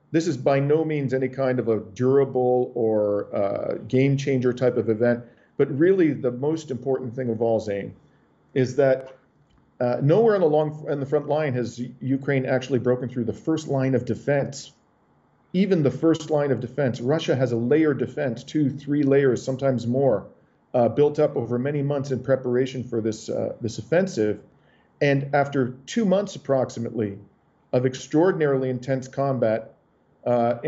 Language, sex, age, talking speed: English, male, 50-69, 170 wpm